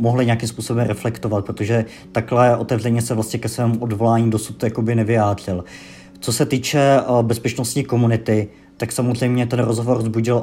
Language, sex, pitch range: Czech, male, 105-115 Hz